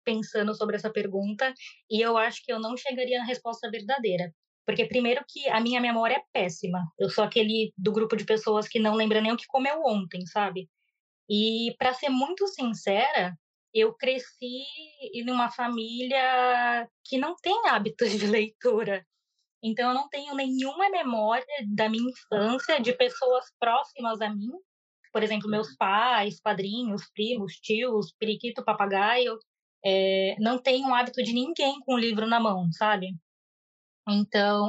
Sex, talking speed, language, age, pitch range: female, 160 wpm, Portuguese, 20-39, 215-255 Hz